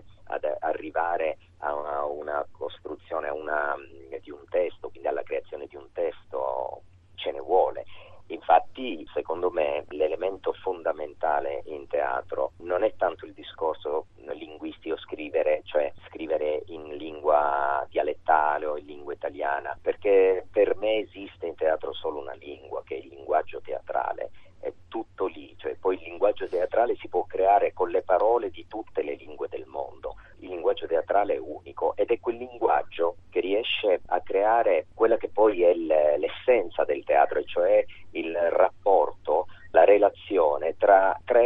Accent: native